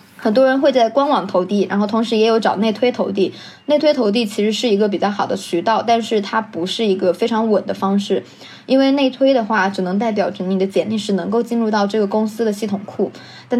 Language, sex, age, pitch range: Chinese, female, 20-39, 195-230 Hz